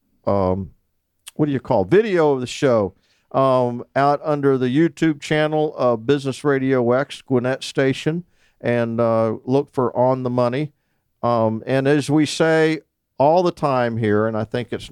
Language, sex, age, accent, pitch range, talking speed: English, male, 50-69, American, 110-145 Hz, 165 wpm